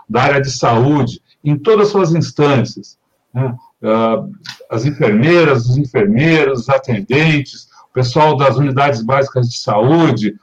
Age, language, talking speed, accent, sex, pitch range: 60-79, Portuguese, 130 wpm, Brazilian, male, 130-165 Hz